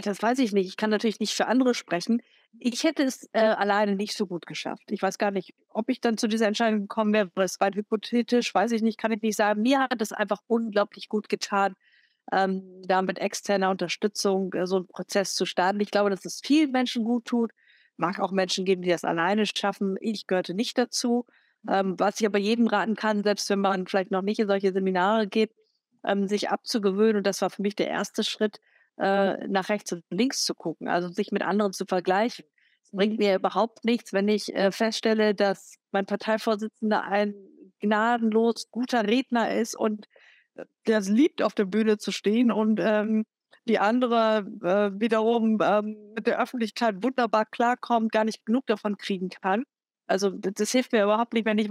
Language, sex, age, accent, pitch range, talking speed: German, female, 50-69, German, 195-225 Hz, 200 wpm